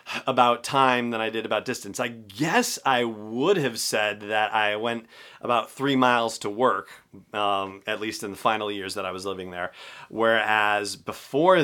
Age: 30-49